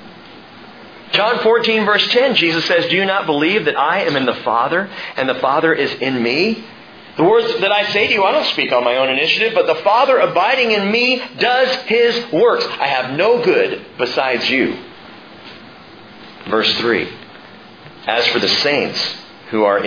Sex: male